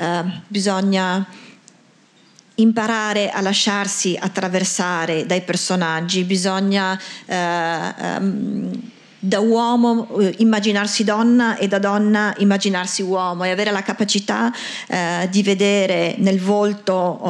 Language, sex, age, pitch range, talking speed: Italian, female, 40-59, 185-225 Hz, 85 wpm